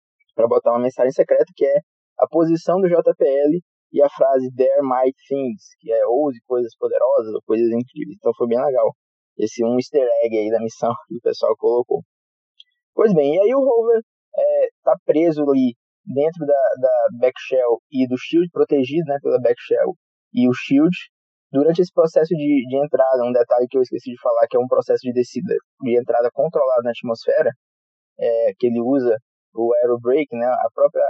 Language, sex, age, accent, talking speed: Portuguese, male, 20-39, Brazilian, 190 wpm